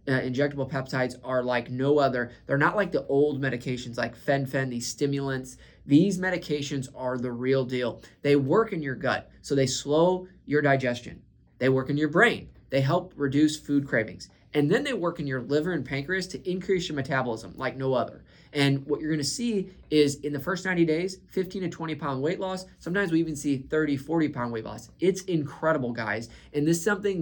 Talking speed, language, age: 205 wpm, English, 20-39